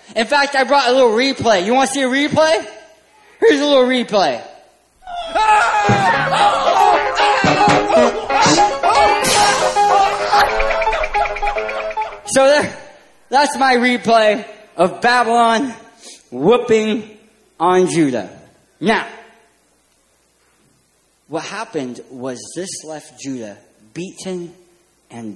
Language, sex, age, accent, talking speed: English, male, 20-39, American, 85 wpm